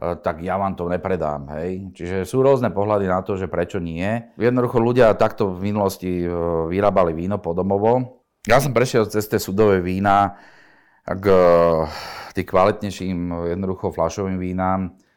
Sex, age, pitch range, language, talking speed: male, 30-49, 90-105 Hz, Slovak, 145 wpm